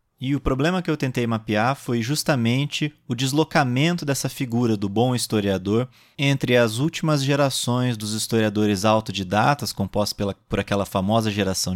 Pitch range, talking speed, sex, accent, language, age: 110-150 Hz, 145 wpm, male, Brazilian, Portuguese, 20-39